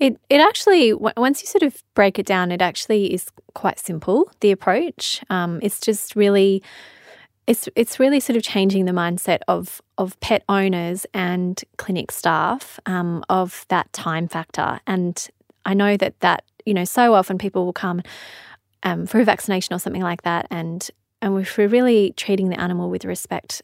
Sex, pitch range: female, 180-205 Hz